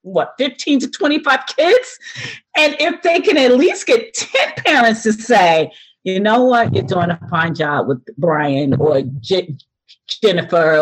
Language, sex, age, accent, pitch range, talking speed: English, female, 40-59, American, 155-250 Hz, 160 wpm